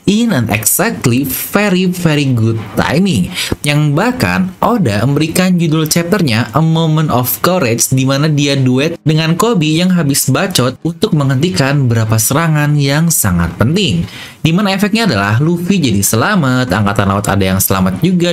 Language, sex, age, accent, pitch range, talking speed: English, male, 20-39, Indonesian, 115-170 Hz, 145 wpm